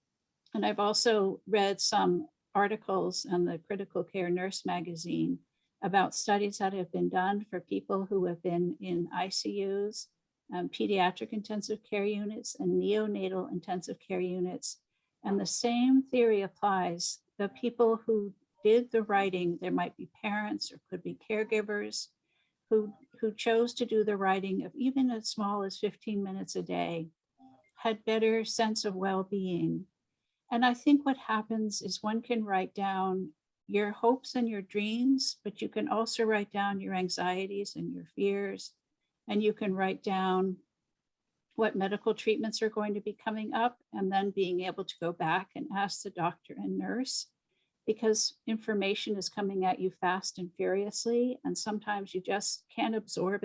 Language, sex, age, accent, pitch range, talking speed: English, female, 60-79, American, 185-220 Hz, 160 wpm